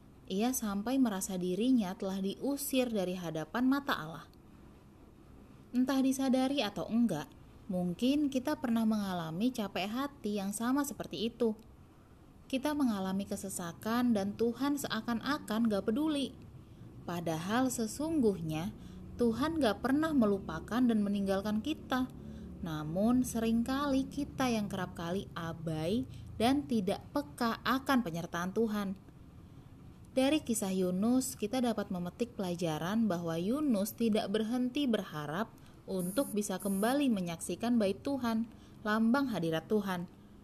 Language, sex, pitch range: Indonesian, female, 195-255 Hz